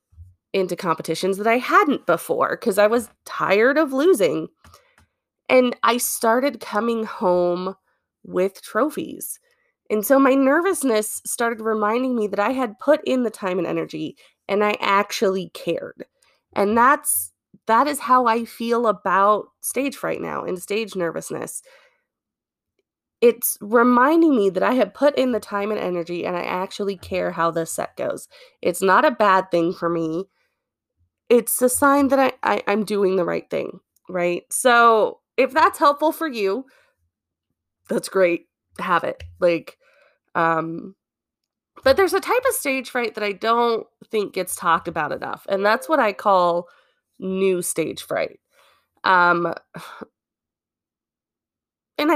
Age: 20-39